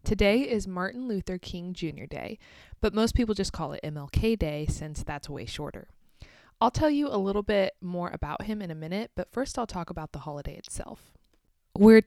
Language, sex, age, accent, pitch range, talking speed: English, female, 20-39, American, 160-205 Hz, 200 wpm